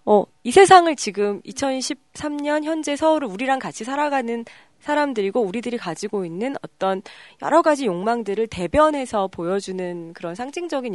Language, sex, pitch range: Korean, female, 180-265 Hz